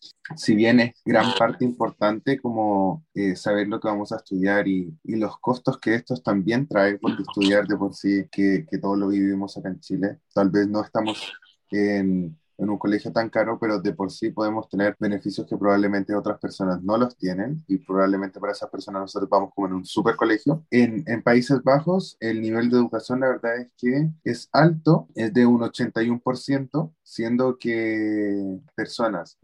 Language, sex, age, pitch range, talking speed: Spanish, male, 20-39, 105-135 Hz, 190 wpm